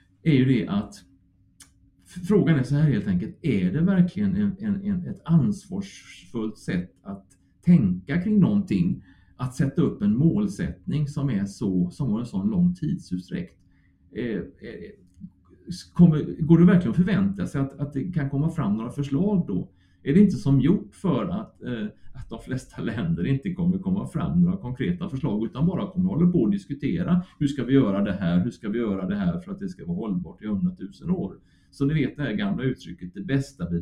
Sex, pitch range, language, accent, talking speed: male, 125-185 Hz, Swedish, Norwegian, 195 wpm